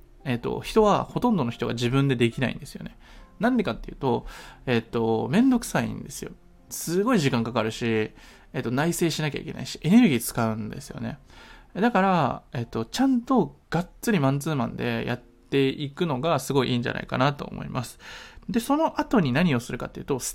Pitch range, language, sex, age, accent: 120-195 Hz, Japanese, male, 20-39, native